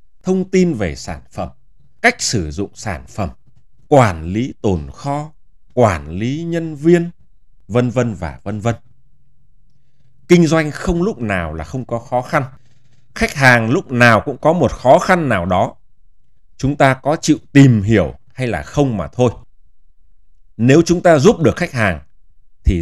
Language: Vietnamese